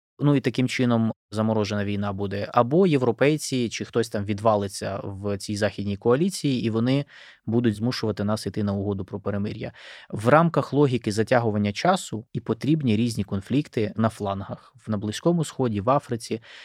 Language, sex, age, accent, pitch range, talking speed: Ukrainian, male, 20-39, native, 105-135 Hz, 155 wpm